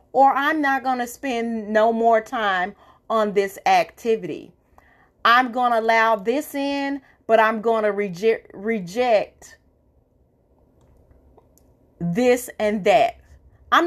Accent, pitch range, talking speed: American, 220-285 Hz, 120 wpm